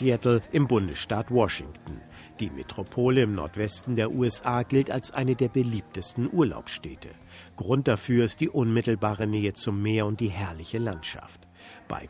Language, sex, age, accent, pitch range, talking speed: German, male, 50-69, German, 105-130 Hz, 145 wpm